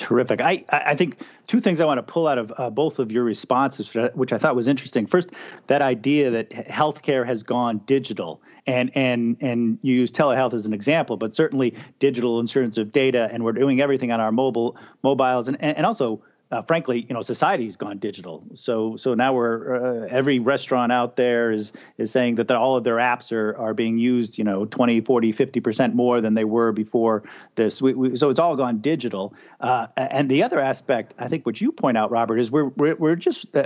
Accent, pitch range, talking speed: American, 115-135 Hz, 215 wpm